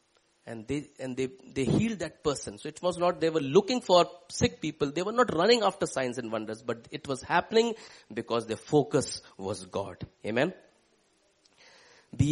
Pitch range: 115-155 Hz